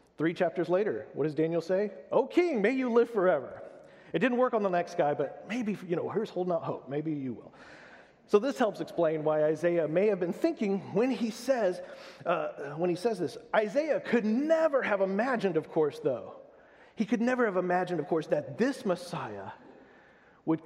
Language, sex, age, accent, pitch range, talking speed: English, male, 40-59, American, 150-215 Hz, 200 wpm